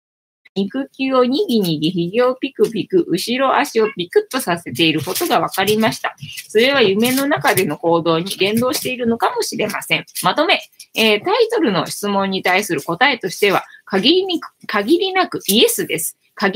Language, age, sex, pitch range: Japanese, 20-39, female, 190-275 Hz